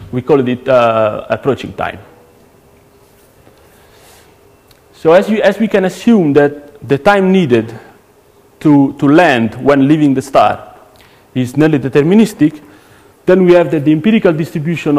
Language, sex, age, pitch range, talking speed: English, male, 40-59, 115-150 Hz, 135 wpm